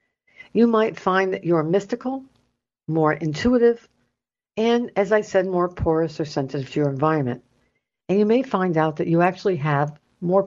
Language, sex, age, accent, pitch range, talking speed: English, female, 60-79, American, 160-210 Hz, 165 wpm